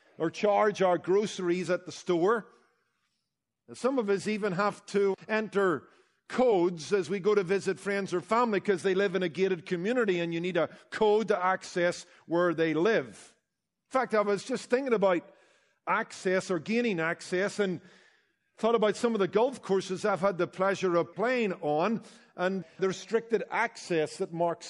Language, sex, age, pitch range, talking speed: English, male, 50-69, 180-215 Hz, 175 wpm